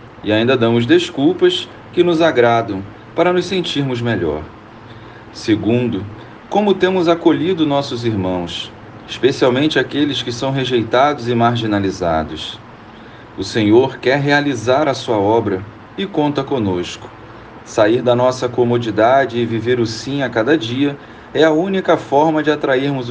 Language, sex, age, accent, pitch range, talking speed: Portuguese, male, 40-59, Brazilian, 110-150 Hz, 130 wpm